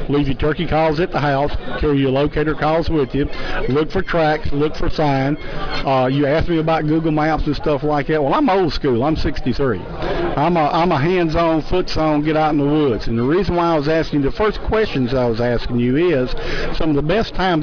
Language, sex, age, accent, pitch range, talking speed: English, male, 50-69, American, 140-165 Hz, 220 wpm